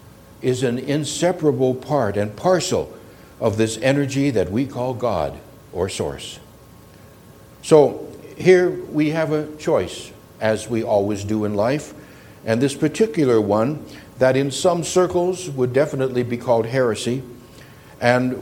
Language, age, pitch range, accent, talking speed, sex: English, 60-79, 120-155 Hz, American, 135 wpm, male